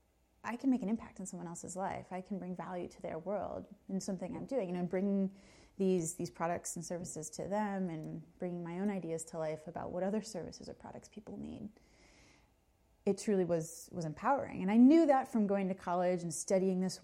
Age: 30-49